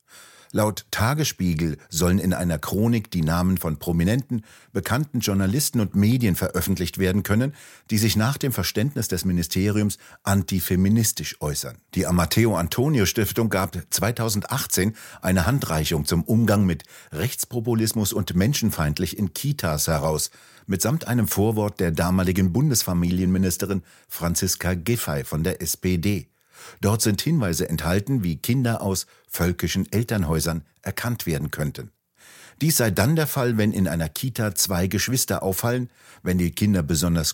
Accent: German